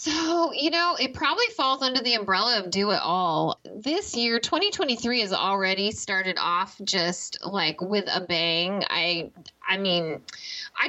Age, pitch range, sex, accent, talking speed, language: 20-39, 195-285 Hz, female, American, 160 wpm, English